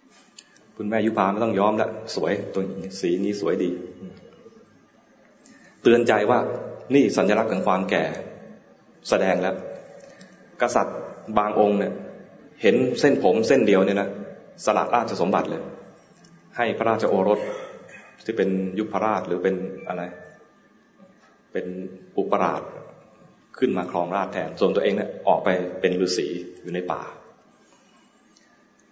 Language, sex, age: English, male, 20-39